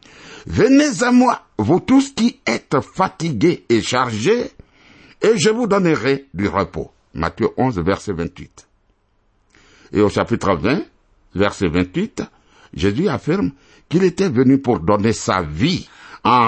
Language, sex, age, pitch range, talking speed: French, male, 60-79, 95-160 Hz, 140 wpm